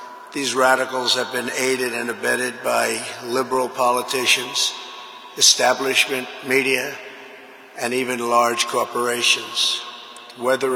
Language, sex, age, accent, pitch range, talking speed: English, male, 50-69, American, 125-130 Hz, 95 wpm